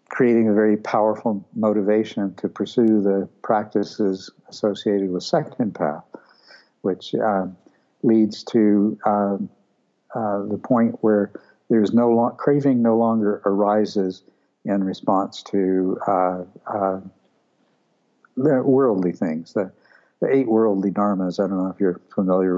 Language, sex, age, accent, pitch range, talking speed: English, male, 60-79, American, 95-110 Hz, 135 wpm